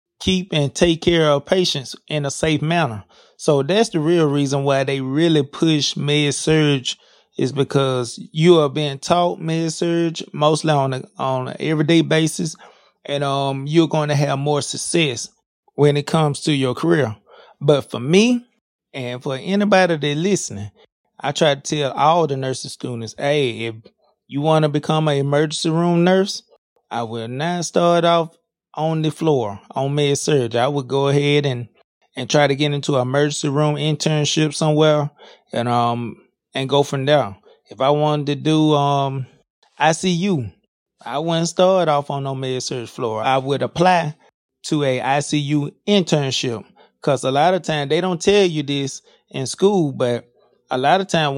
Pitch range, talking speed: 140-165 Hz, 175 wpm